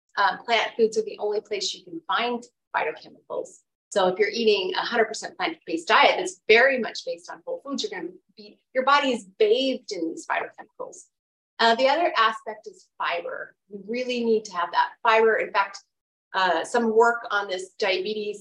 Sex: female